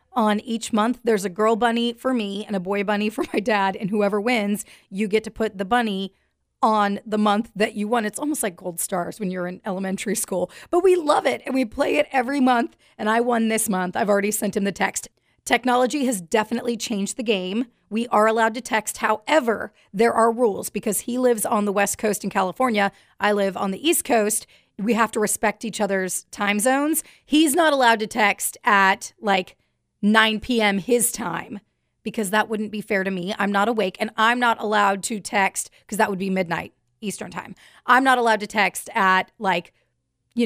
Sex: female